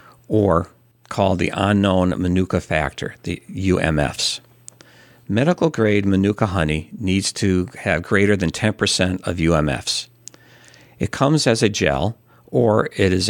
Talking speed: 120 wpm